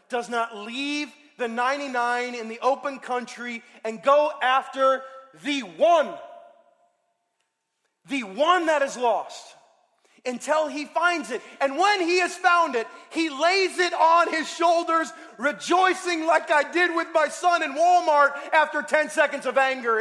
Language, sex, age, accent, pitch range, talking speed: English, male, 30-49, American, 235-325 Hz, 145 wpm